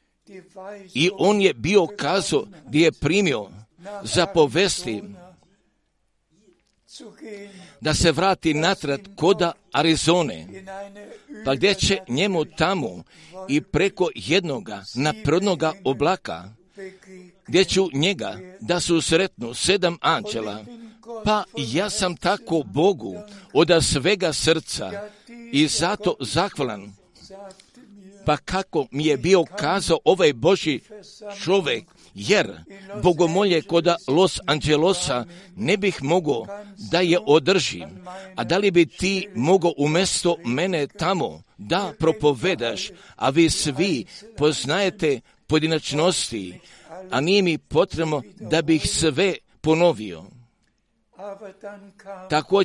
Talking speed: 100 wpm